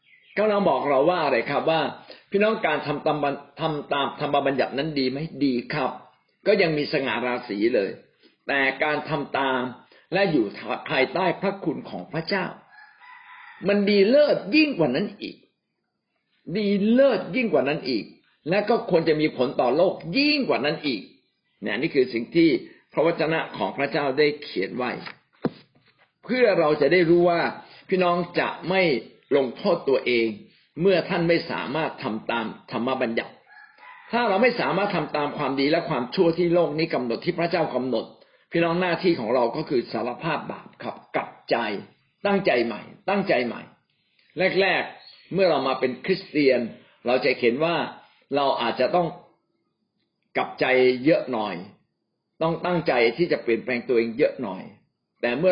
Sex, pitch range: male, 135-195 Hz